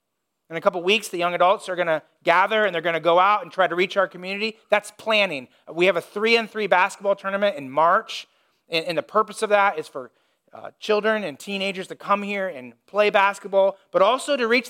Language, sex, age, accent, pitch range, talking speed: English, male, 30-49, American, 195-250 Hz, 225 wpm